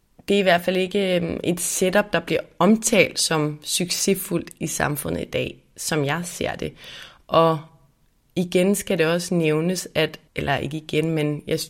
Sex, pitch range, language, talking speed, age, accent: female, 155-185 Hz, Danish, 170 wpm, 20-39, native